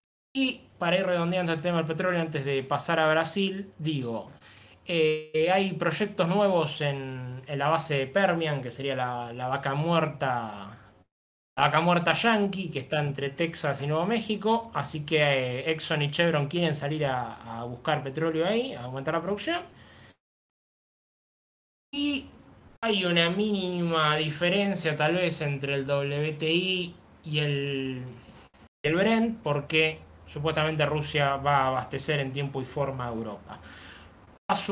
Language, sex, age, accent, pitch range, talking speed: Spanish, male, 20-39, Argentinian, 135-170 Hz, 145 wpm